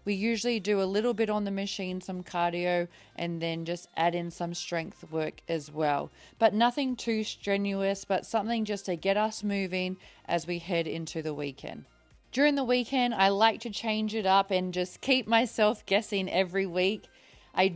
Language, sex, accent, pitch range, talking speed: English, female, Australian, 180-225 Hz, 185 wpm